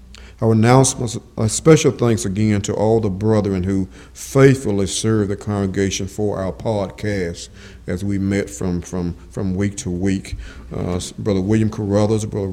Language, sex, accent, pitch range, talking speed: English, male, American, 95-110 Hz, 155 wpm